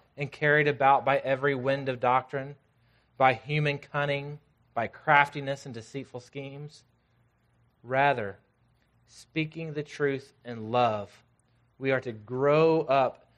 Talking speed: 120 wpm